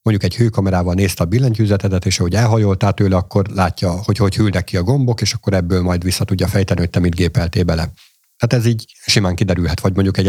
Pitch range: 95-120 Hz